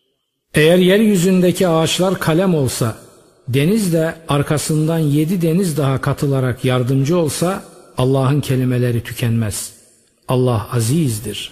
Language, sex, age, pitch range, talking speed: Turkish, male, 50-69, 120-160 Hz, 100 wpm